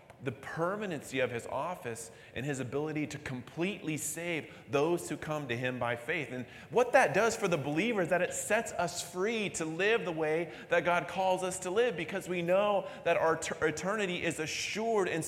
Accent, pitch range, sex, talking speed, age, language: American, 145-185 Hz, male, 200 wpm, 30-49, English